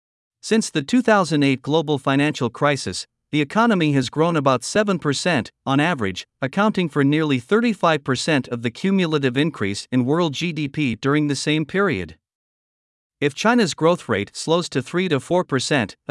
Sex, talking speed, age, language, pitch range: male, 140 wpm, 50-69, Vietnamese, 130-170 Hz